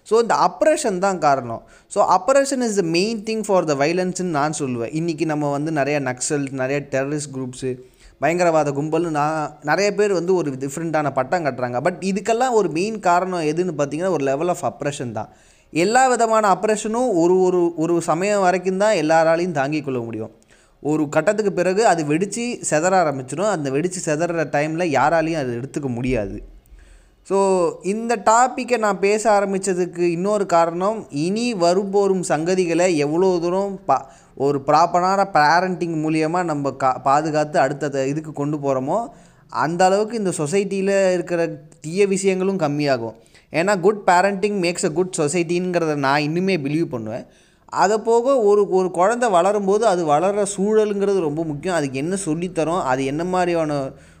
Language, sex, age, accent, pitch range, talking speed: Tamil, male, 20-39, native, 145-195 Hz, 145 wpm